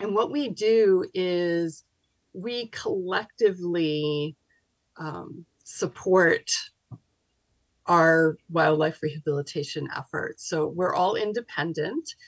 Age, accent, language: 40-59, American, English